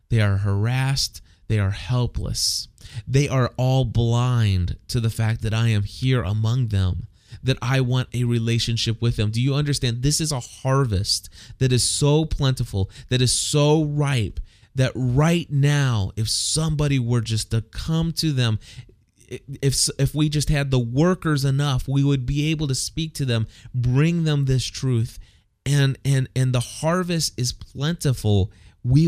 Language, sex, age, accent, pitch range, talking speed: English, male, 20-39, American, 105-135 Hz, 165 wpm